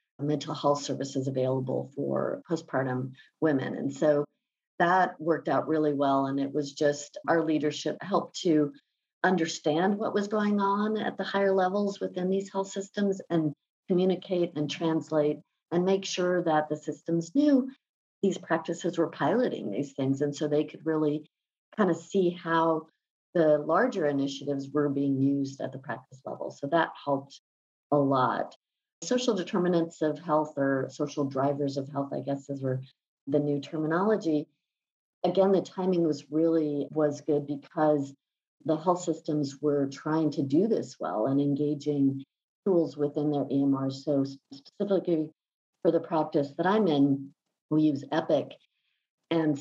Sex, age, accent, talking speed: female, 50-69, American, 150 wpm